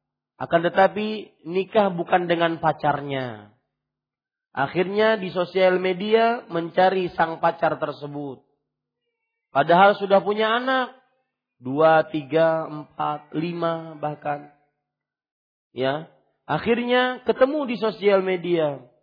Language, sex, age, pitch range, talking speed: Malay, male, 40-59, 145-230 Hz, 90 wpm